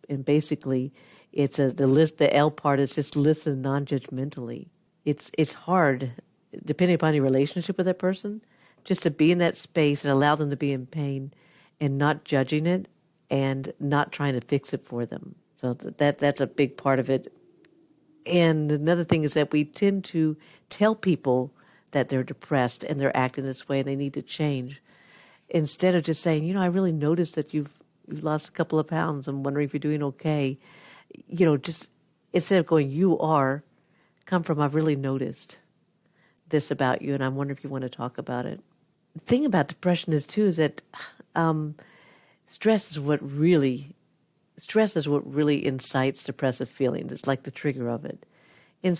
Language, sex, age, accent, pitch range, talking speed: English, female, 50-69, American, 140-180 Hz, 190 wpm